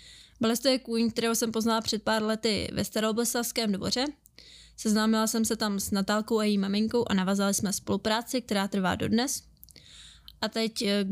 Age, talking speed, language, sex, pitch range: 20-39, 165 wpm, Czech, female, 205-225 Hz